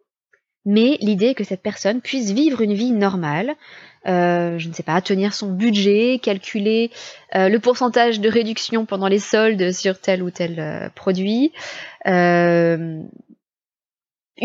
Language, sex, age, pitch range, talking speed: French, female, 20-39, 185-240 Hz, 140 wpm